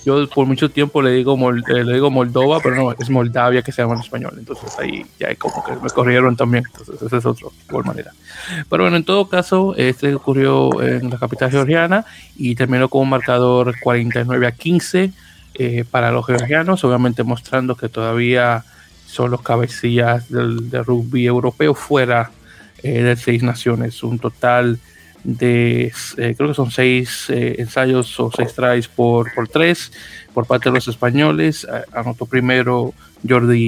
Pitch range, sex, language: 120-135 Hz, male, Spanish